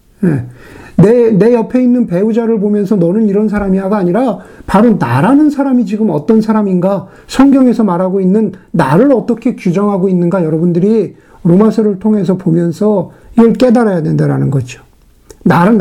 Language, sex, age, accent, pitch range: Korean, male, 50-69, native, 170-225 Hz